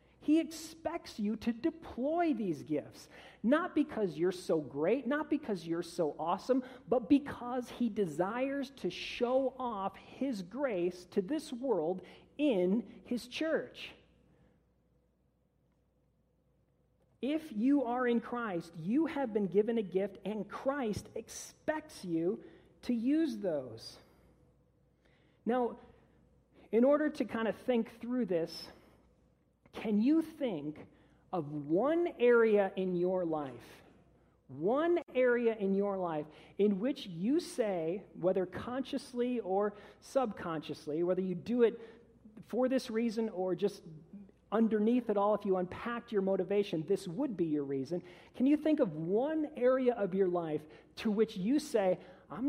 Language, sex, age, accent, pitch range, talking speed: English, male, 40-59, American, 185-260 Hz, 135 wpm